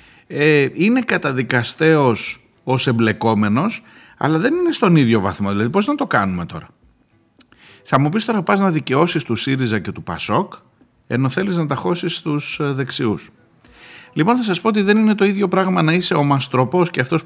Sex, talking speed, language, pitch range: male, 175 wpm, Greek, 120-165 Hz